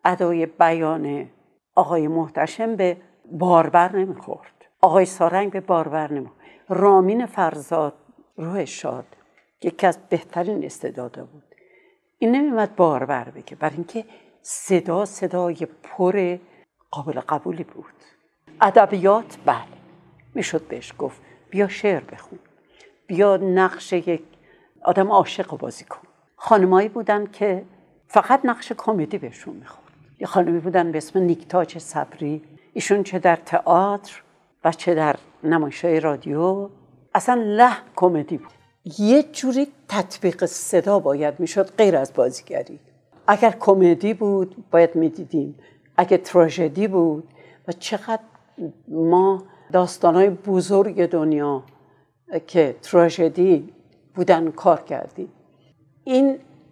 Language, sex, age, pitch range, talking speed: Persian, female, 60-79, 165-200 Hz, 110 wpm